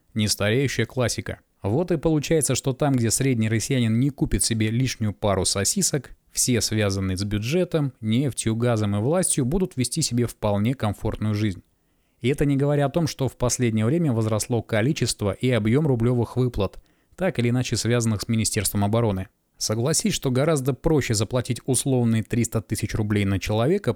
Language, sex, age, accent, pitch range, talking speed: Russian, male, 20-39, native, 105-130 Hz, 160 wpm